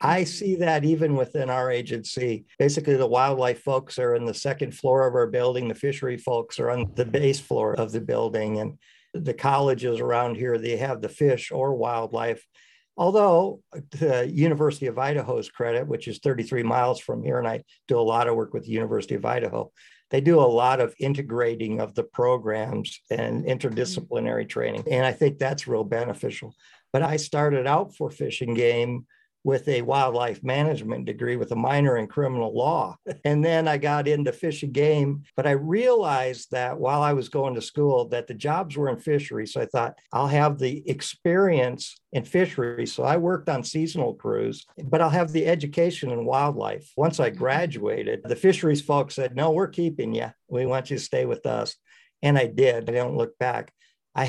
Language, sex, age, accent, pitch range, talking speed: English, male, 50-69, American, 125-155 Hz, 190 wpm